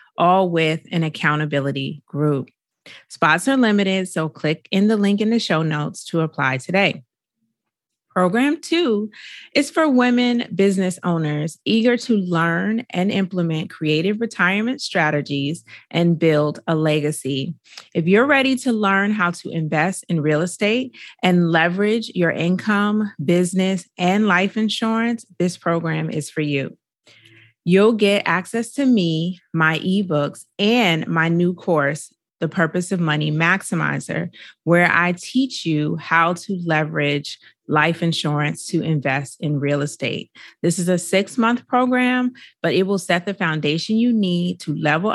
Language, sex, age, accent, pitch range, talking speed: English, female, 30-49, American, 155-205 Hz, 145 wpm